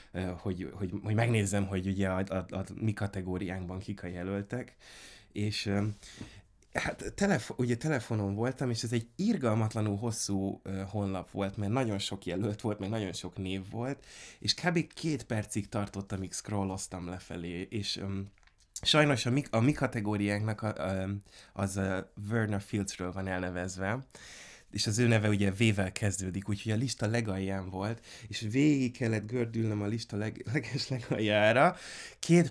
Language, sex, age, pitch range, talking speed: Hungarian, male, 20-39, 95-115 Hz, 135 wpm